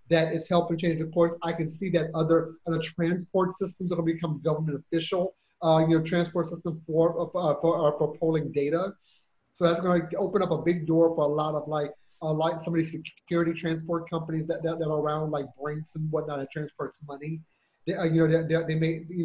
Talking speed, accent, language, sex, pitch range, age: 230 wpm, American, English, male, 155-170 Hz, 30-49